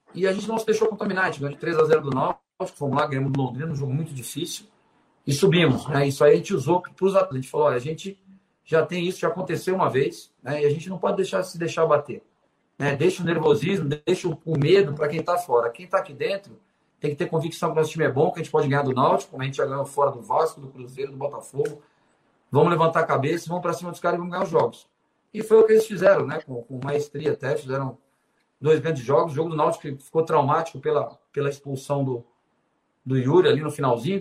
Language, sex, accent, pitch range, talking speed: Portuguese, male, Brazilian, 140-170 Hz, 250 wpm